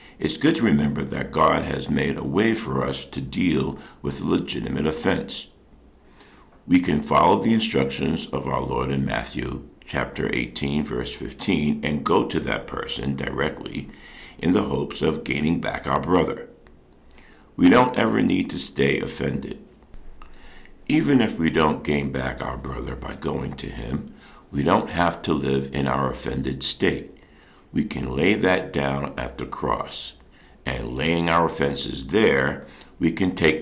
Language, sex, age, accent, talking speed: English, male, 60-79, American, 160 wpm